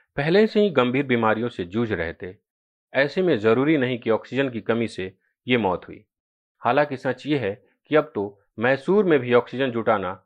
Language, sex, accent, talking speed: Hindi, male, native, 195 wpm